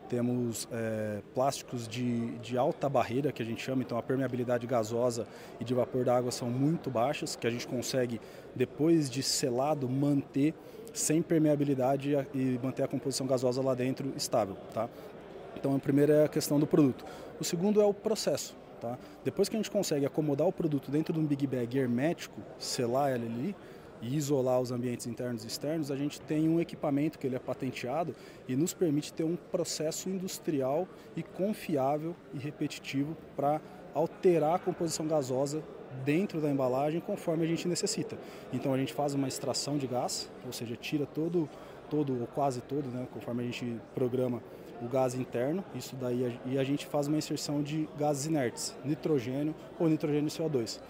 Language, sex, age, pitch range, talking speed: Portuguese, male, 20-39, 125-160 Hz, 175 wpm